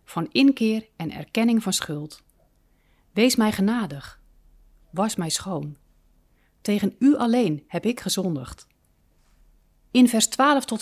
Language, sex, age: Dutch, female, 40-59